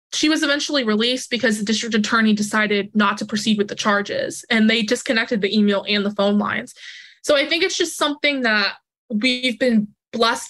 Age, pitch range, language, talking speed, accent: 20-39, 215-275 Hz, English, 195 wpm, American